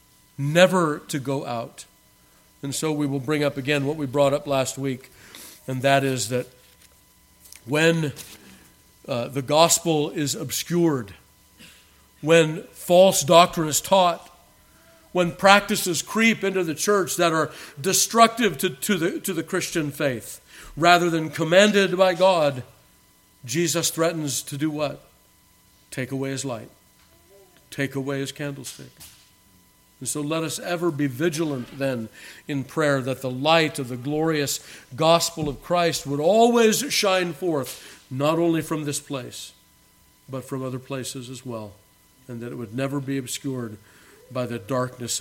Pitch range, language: 125-165 Hz, English